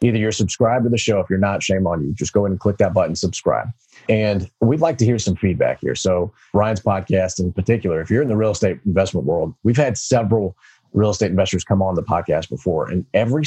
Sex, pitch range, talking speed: male, 95-110 Hz, 240 wpm